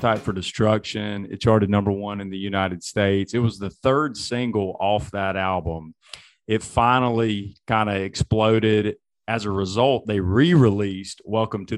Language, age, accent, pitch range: English, 30-49, American, 95-110 Hz